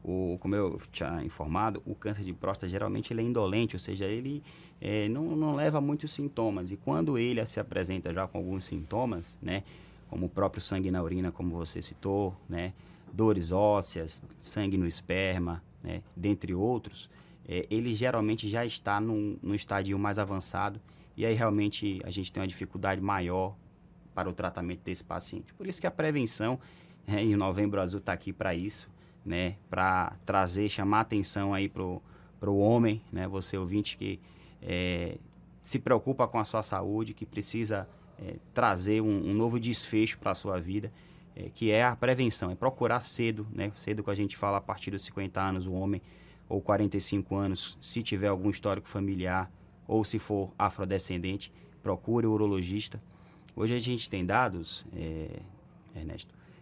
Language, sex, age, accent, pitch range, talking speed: Portuguese, male, 20-39, Brazilian, 95-110 Hz, 175 wpm